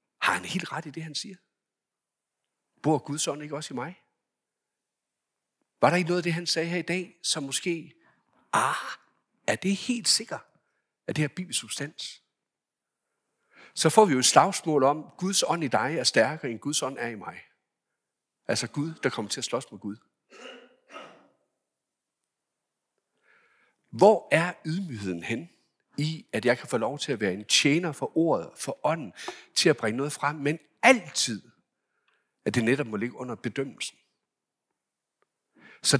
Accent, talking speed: Danish, 165 wpm